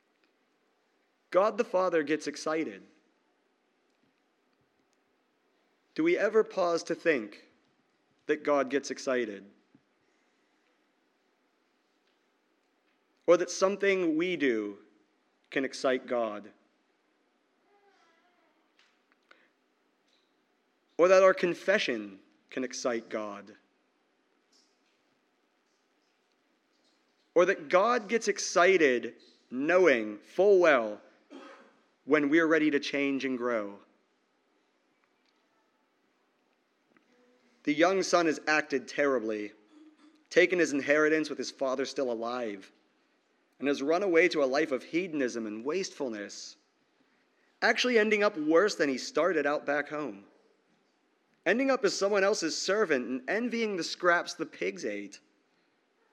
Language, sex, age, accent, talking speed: English, male, 40-59, American, 100 wpm